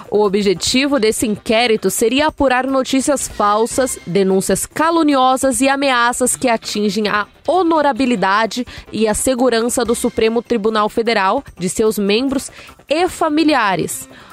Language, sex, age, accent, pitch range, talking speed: Portuguese, female, 20-39, Brazilian, 210-265 Hz, 115 wpm